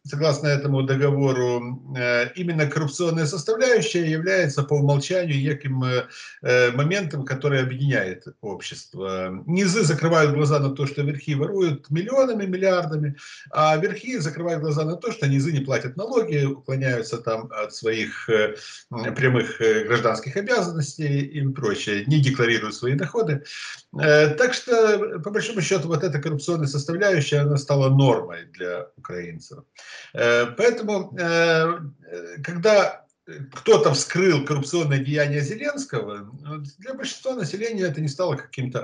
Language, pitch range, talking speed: Russian, 125-165 Hz, 115 wpm